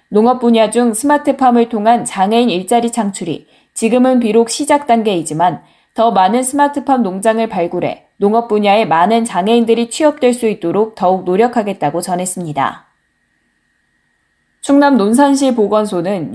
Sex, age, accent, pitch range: female, 10-29, native, 190-245 Hz